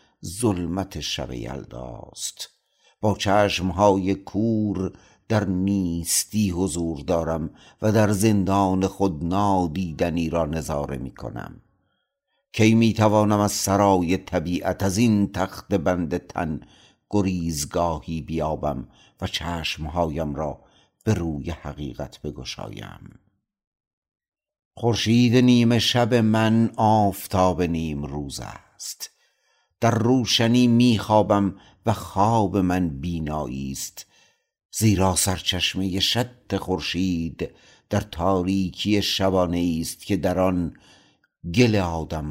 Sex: male